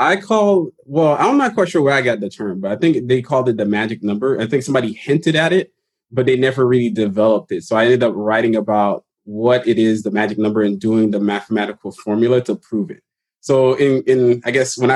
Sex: male